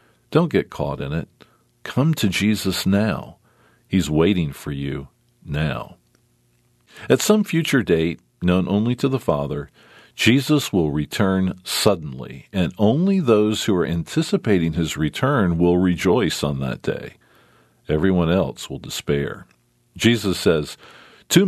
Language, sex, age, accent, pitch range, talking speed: English, male, 50-69, American, 75-110 Hz, 130 wpm